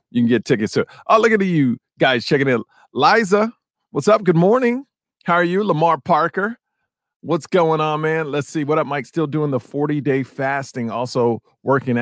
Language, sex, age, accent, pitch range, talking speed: English, male, 40-59, American, 125-165 Hz, 195 wpm